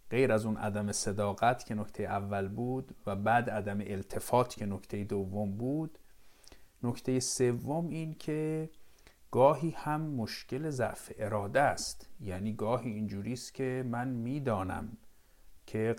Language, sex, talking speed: Persian, male, 130 wpm